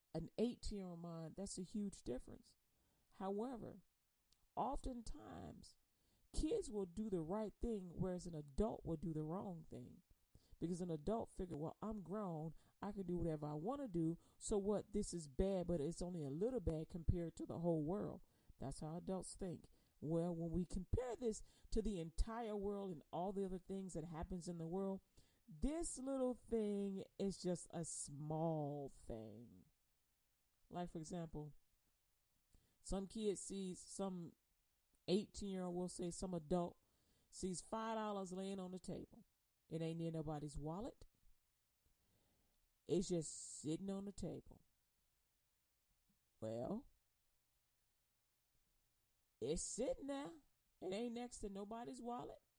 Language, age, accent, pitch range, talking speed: English, 40-59, American, 160-205 Hz, 145 wpm